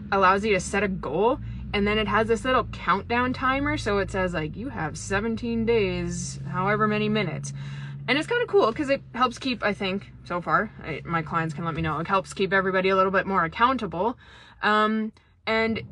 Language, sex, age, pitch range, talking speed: English, female, 20-39, 180-225 Hz, 205 wpm